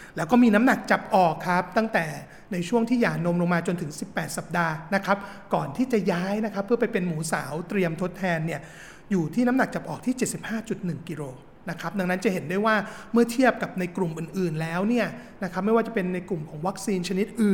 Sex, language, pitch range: male, Thai, 175-210 Hz